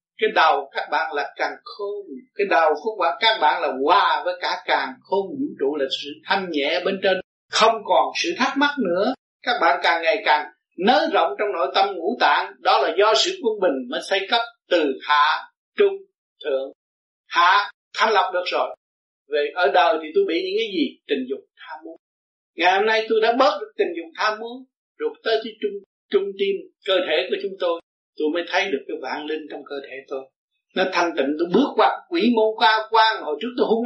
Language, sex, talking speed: Vietnamese, male, 215 wpm